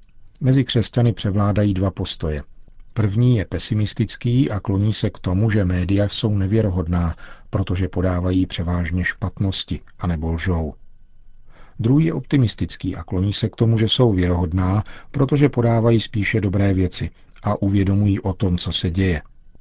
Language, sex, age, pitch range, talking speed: Czech, male, 50-69, 90-110 Hz, 140 wpm